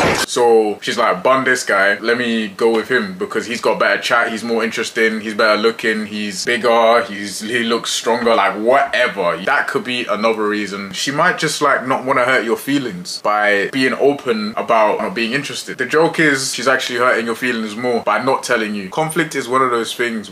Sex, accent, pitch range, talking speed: male, British, 105-130 Hz, 210 wpm